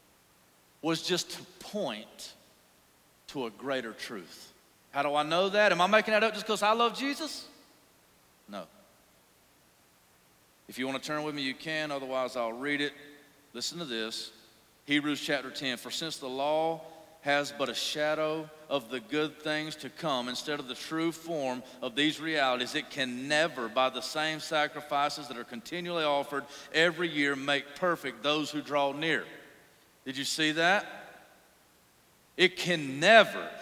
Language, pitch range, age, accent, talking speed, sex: English, 145-205 Hz, 40-59, American, 160 wpm, male